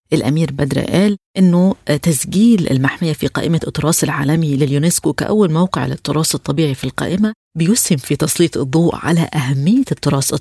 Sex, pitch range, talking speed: female, 145-175 Hz, 140 wpm